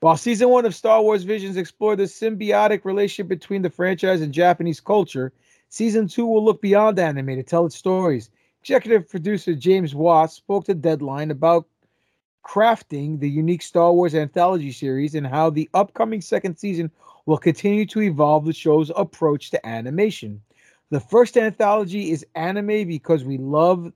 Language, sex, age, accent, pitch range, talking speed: English, male, 30-49, American, 150-195 Hz, 165 wpm